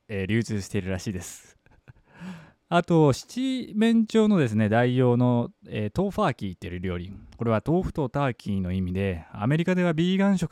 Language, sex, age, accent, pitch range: Japanese, male, 20-39, native, 100-160 Hz